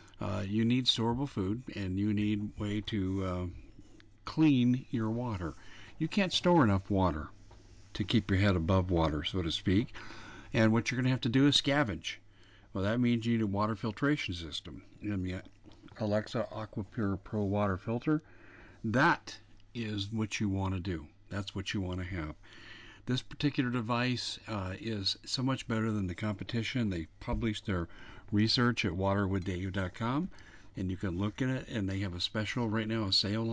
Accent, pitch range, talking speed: American, 95-115 Hz, 175 wpm